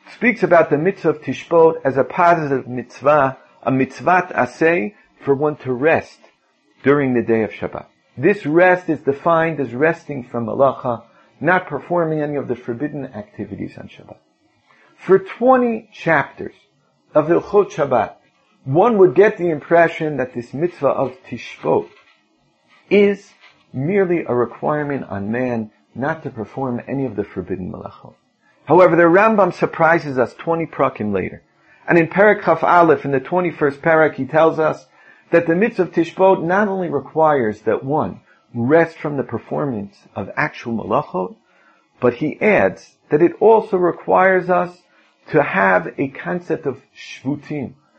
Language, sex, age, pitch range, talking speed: English, male, 50-69, 135-180 Hz, 150 wpm